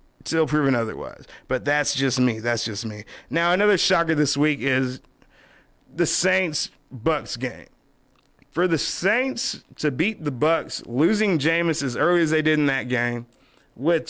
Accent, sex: American, male